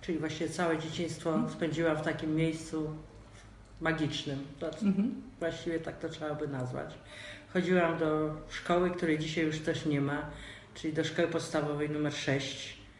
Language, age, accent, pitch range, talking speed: Polish, 50-69, native, 145-185 Hz, 140 wpm